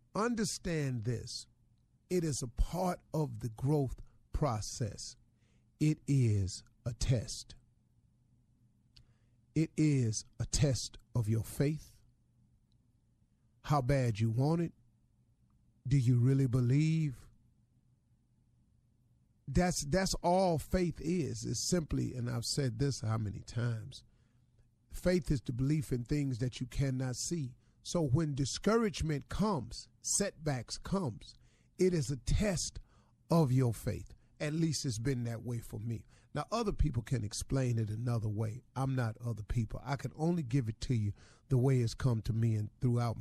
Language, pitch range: English, 115-145 Hz